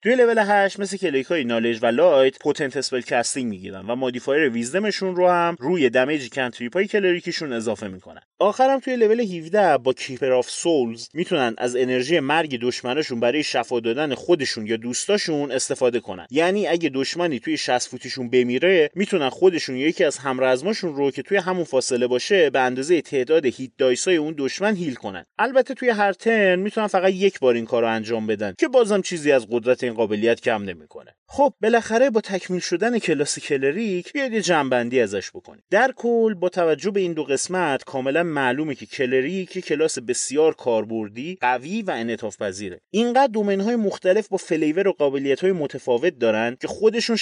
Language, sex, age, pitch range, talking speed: Persian, male, 30-49, 125-195 Hz, 170 wpm